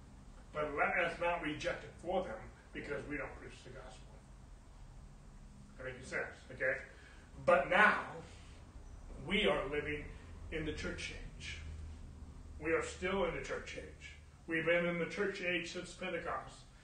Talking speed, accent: 150 wpm, American